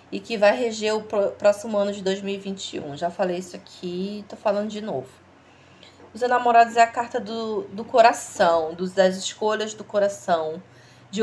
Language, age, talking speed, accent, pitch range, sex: Portuguese, 20-39, 165 wpm, Brazilian, 190-230 Hz, female